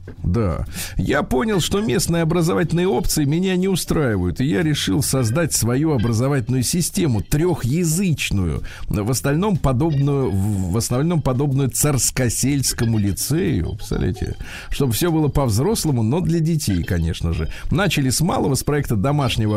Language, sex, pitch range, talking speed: Russian, male, 110-145 Hz, 130 wpm